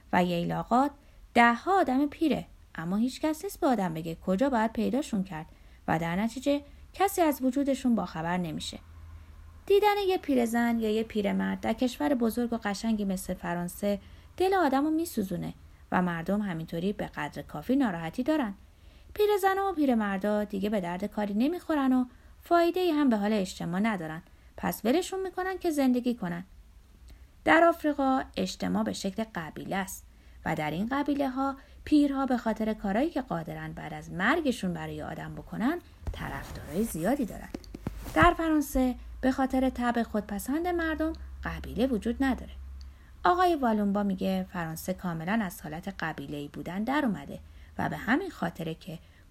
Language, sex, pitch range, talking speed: Persian, female, 175-280 Hz, 155 wpm